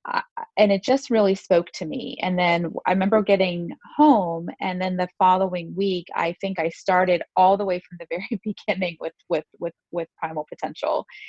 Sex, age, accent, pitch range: female, 30-49, American, 170-210 Hz